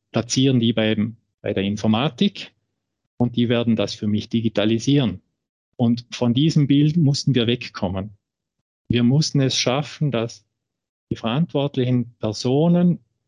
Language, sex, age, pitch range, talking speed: German, male, 50-69, 110-135 Hz, 125 wpm